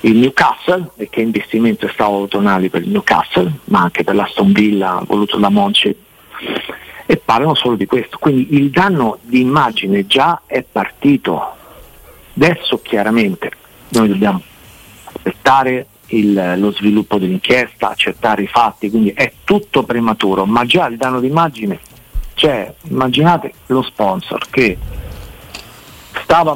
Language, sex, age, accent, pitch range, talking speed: Italian, male, 50-69, native, 115-140 Hz, 135 wpm